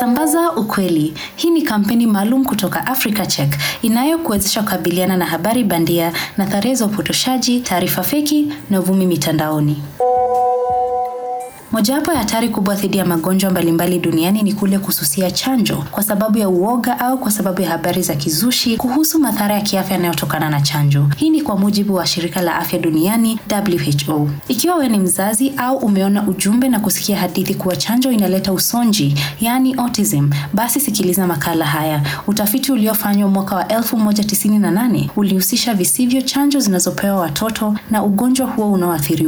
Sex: female